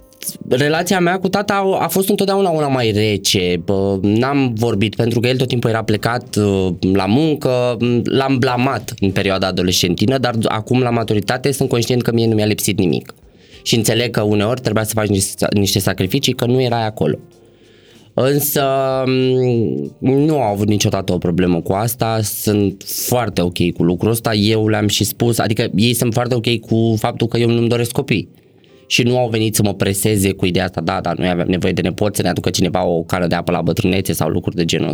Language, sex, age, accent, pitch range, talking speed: Romanian, male, 20-39, native, 95-125 Hz, 195 wpm